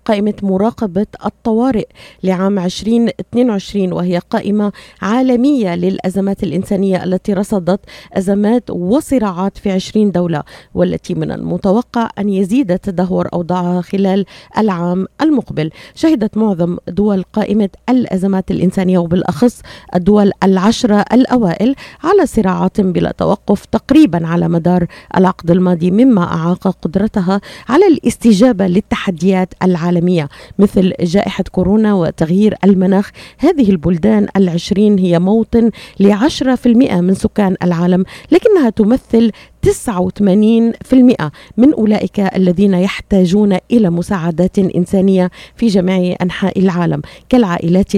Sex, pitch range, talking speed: female, 185-220 Hz, 105 wpm